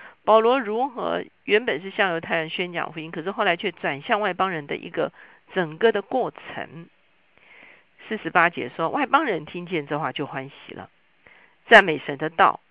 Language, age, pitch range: Chinese, 50-69, 155-215 Hz